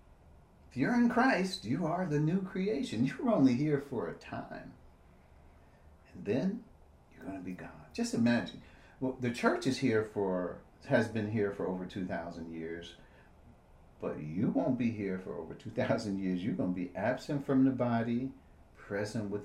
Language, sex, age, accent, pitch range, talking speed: English, male, 50-69, American, 85-125 Hz, 175 wpm